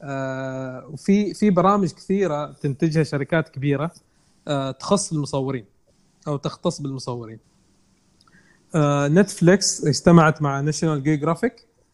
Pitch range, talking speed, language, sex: 140-170 Hz, 85 wpm, Arabic, male